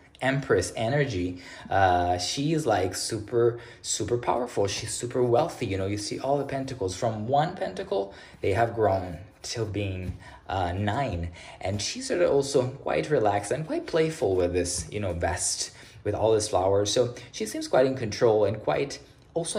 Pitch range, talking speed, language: 100-135 Hz, 175 wpm, English